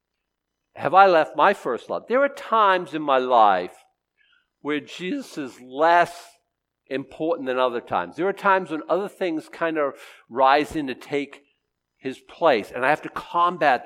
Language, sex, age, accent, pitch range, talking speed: English, male, 50-69, American, 150-240 Hz, 170 wpm